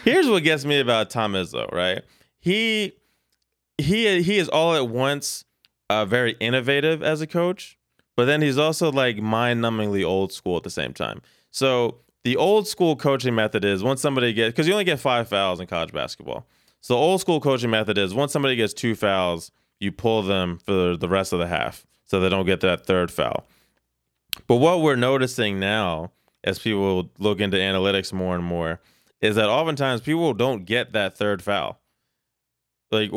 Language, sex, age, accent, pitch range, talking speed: English, male, 20-39, American, 95-130 Hz, 190 wpm